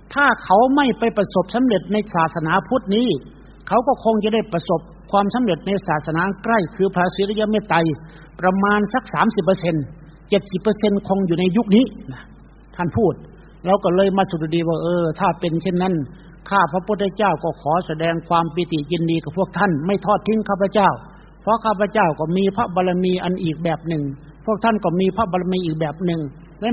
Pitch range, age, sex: 170-215 Hz, 60-79, male